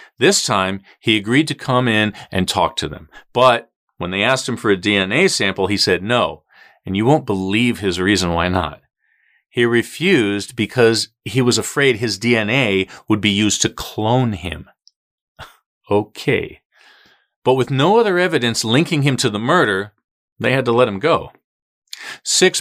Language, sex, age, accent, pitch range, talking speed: English, male, 40-59, American, 100-135 Hz, 165 wpm